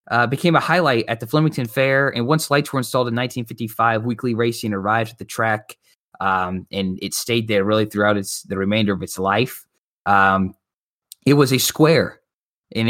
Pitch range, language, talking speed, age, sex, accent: 100-130 Hz, English, 185 wpm, 20-39, male, American